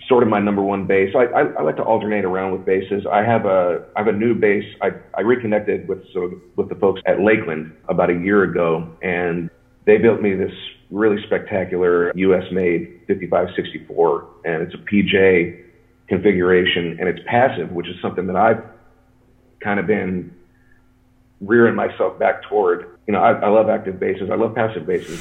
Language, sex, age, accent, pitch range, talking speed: English, male, 40-59, American, 90-110 Hz, 190 wpm